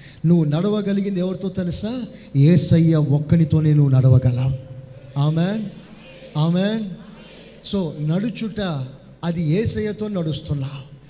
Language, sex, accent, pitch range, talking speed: Telugu, male, native, 155-245 Hz, 80 wpm